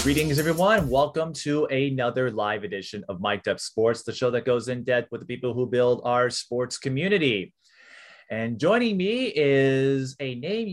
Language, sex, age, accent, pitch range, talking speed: English, male, 30-49, American, 115-145 Hz, 170 wpm